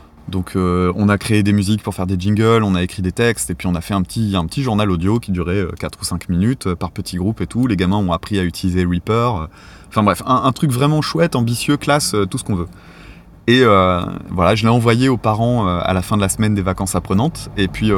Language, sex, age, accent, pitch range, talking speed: French, male, 20-39, French, 90-110 Hz, 255 wpm